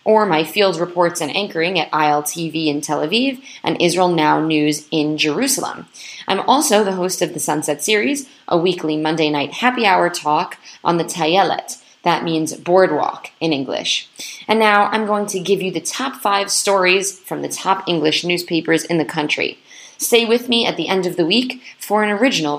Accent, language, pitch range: American, English, 160-210 Hz